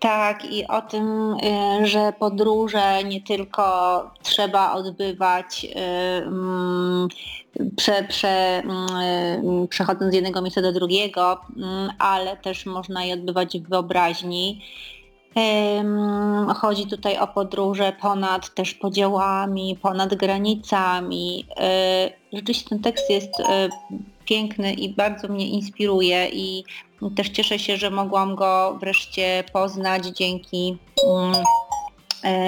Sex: female